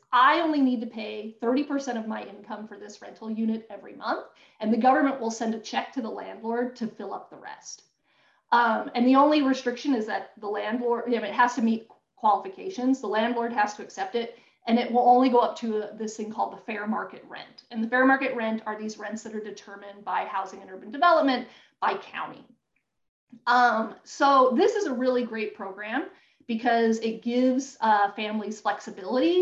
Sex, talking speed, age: female, 195 wpm, 30-49